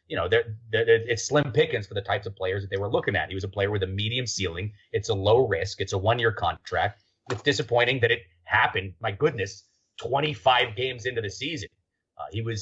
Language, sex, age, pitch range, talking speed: English, male, 30-49, 95-115 Hz, 220 wpm